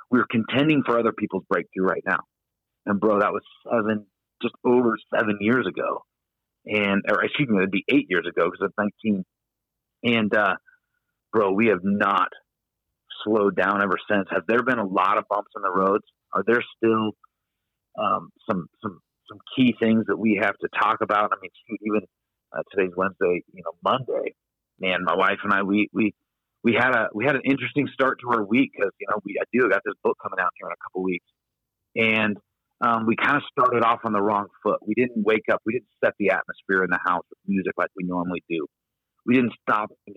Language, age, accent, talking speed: English, 40-59, American, 215 wpm